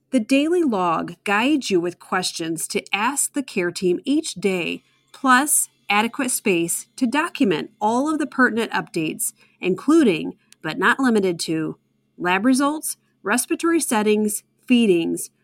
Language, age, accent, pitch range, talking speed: English, 40-59, American, 180-255 Hz, 130 wpm